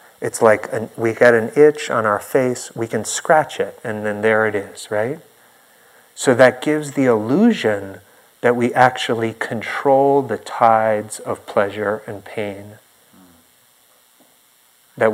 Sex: male